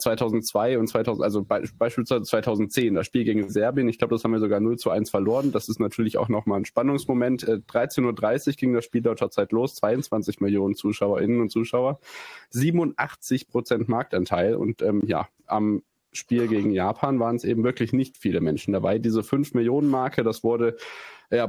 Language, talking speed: German, 180 wpm